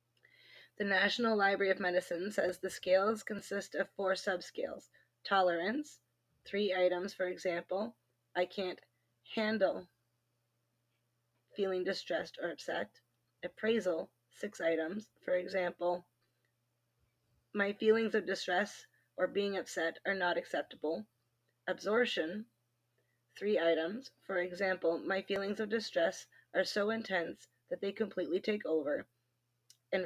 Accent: American